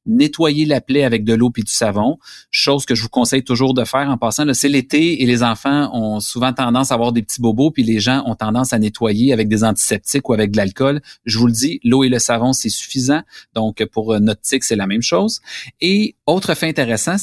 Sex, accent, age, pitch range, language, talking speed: male, Canadian, 30-49, 115-150 Hz, French, 240 wpm